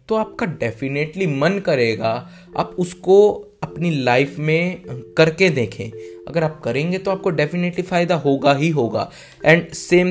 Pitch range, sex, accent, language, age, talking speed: 115-160 Hz, male, native, Hindi, 20-39, 140 wpm